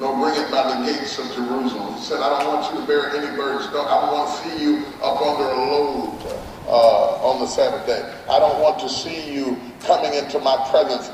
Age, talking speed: 30-49, 235 wpm